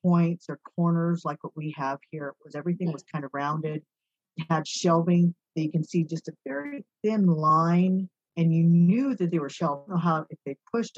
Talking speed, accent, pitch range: 210 wpm, American, 150-185 Hz